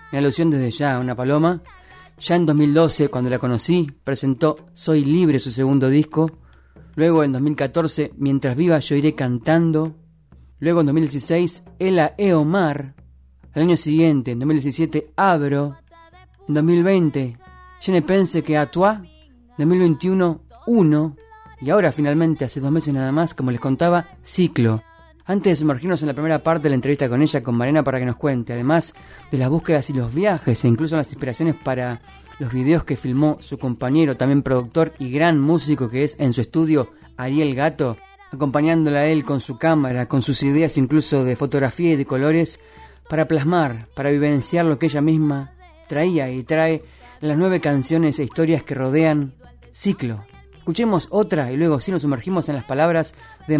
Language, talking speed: Spanish, 170 wpm